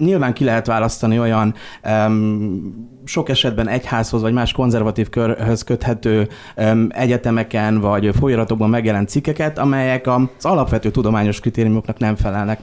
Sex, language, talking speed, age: male, Hungarian, 120 wpm, 30-49